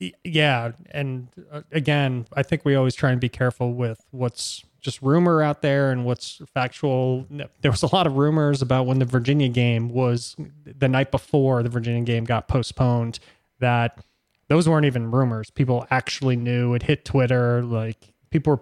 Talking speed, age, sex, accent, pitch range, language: 175 wpm, 20-39, male, American, 120-140 Hz, English